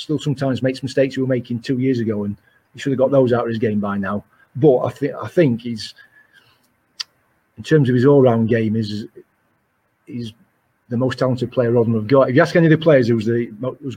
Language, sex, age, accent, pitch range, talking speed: English, male, 40-59, British, 110-130 Hz, 230 wpm